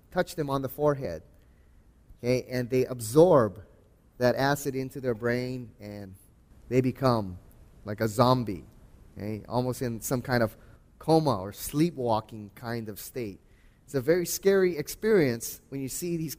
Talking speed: 150 wpm